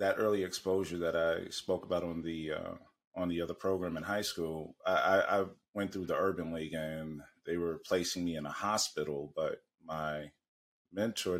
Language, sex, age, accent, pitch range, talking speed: English, male, 30-49, American, 90-105 Hz, 185 wpm